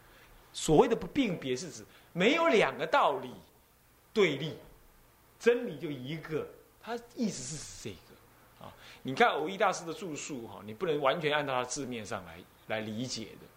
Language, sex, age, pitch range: Chinese, male, 30-49, 120-195 Hz